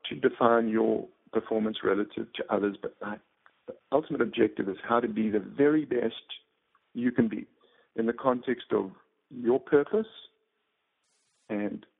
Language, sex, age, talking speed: English, male, 50-69, 140 wpm